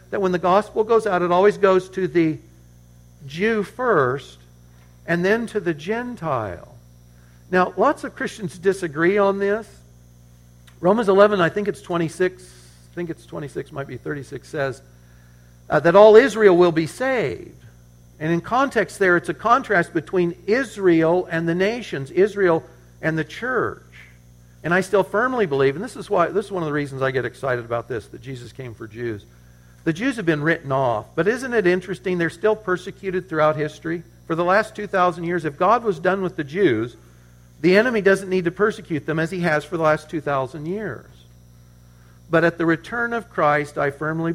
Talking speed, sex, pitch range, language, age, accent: 185 wpm, male, 125-190 Hz, English, 60-79, American